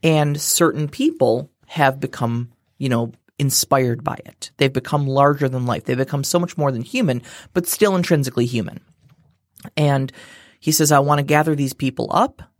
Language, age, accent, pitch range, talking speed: English, 30-49, American, 125-160 Hz, 170 wpm